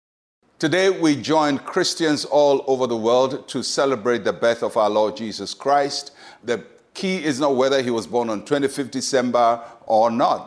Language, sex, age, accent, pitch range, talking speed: English, male, 50-69, Nigerian, 120-160 Hz, 170 wpm